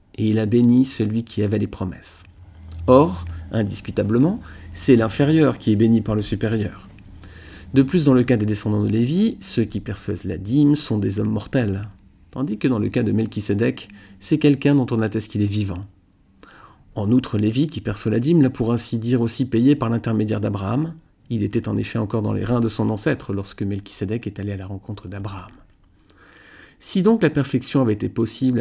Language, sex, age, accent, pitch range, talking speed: French, male, 40-59, French, 105-130 Hz, 195 wpm